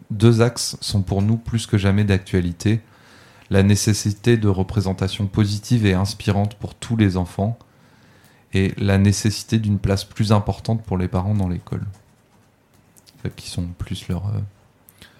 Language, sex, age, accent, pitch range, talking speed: French, male, 30-49, French, 95-110 Hz, 140 wpm